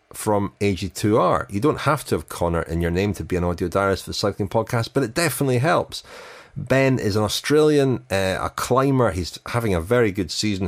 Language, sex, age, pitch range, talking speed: English, male, 30-49, 85-115 Hz, 210 wpm